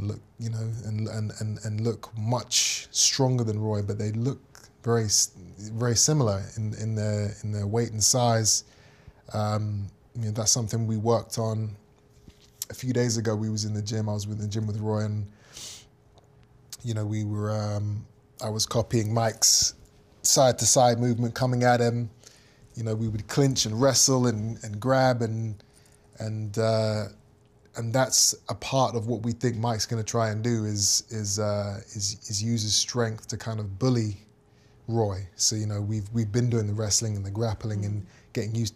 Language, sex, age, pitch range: English, male, 20-39, 105-115 Hz